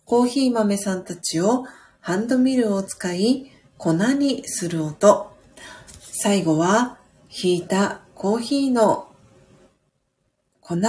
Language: Japanese